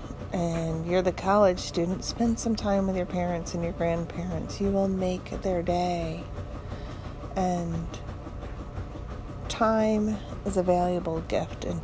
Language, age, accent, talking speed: English, 40-59, American, 130 wpm